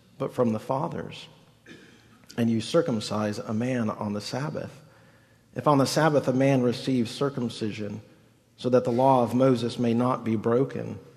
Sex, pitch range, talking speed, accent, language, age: male, 115-145 Hz, 160 wpm, American, English, 40-59